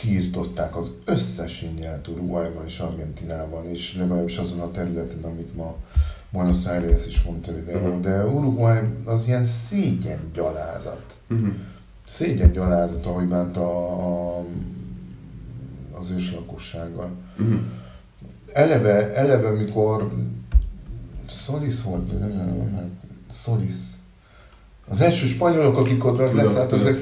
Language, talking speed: Hungarian, 95 wpm